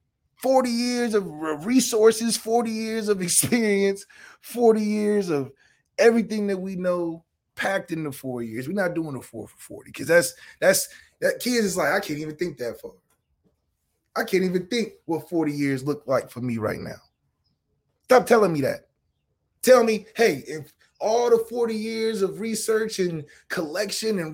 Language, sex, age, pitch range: English, male, 20-39, 155-220 Hz